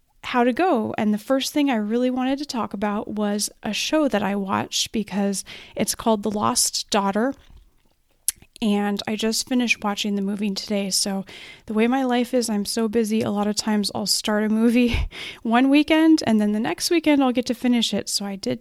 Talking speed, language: 210 wpm, English